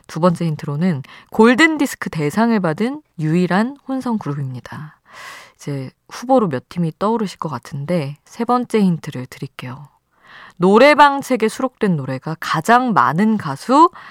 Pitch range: 145-225 Hz